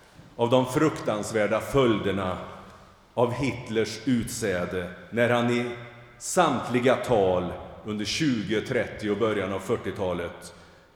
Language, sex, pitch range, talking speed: Swedish, male, 90-120 Hz, 100 wpm